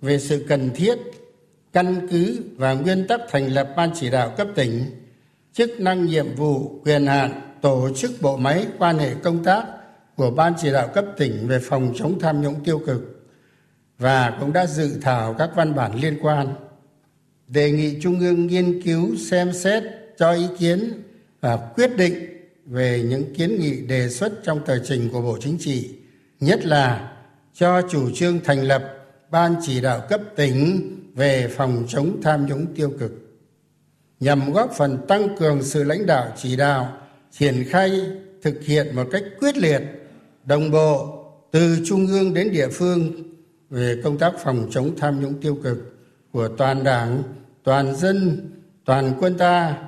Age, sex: 60-79, male